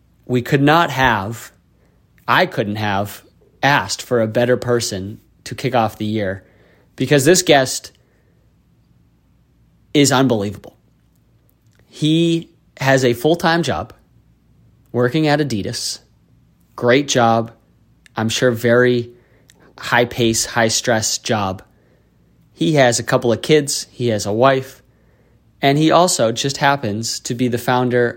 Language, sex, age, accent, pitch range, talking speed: English, male, 30-49, American, 110-125 Hz, 120 wpm